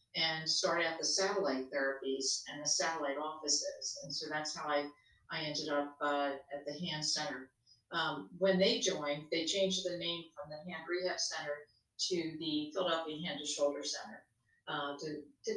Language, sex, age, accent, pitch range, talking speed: English, female, 50-69, American, 145-170 Hz, 175 wpm